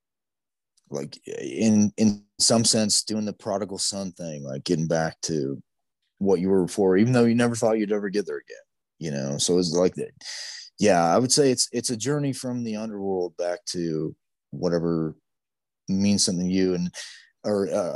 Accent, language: American, English